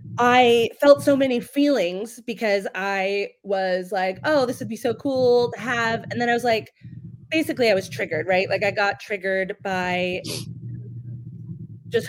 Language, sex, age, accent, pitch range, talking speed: English, female, 20-39, American, 180-230 Hz, 165 wpm